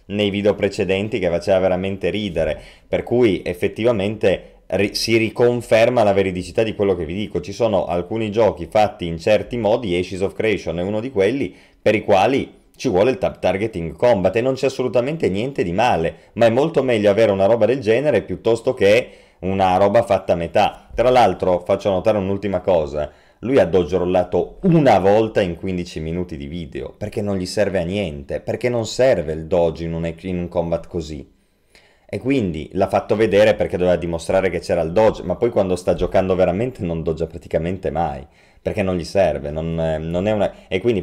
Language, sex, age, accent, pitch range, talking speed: Italian, male, 30-49, native, 85-105 Hz, 195 wpm